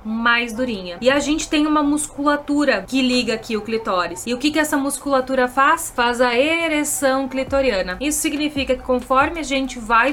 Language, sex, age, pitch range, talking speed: Portuguese, female, 20-39, 255-295 Hz, 185 wpm